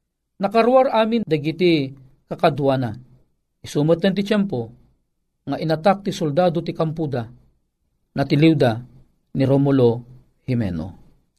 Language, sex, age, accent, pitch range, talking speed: Filipino, male, 50-69, native, 150-220 Hz, 90 wpm